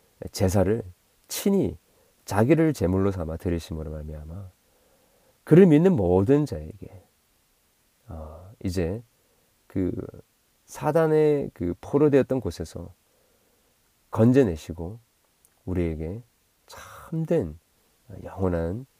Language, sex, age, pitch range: Korean, male, 40-59, 85-115 Hz